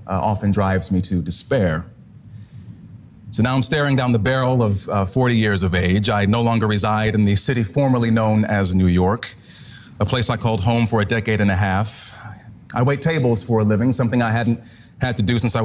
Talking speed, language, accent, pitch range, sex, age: 215 wpm, English, American, 105-130 Hz, male, 30-49